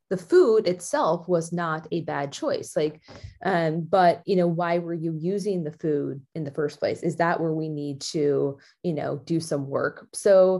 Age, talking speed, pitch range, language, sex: 20-39, 200 wpm, 160-195 Hz, English, female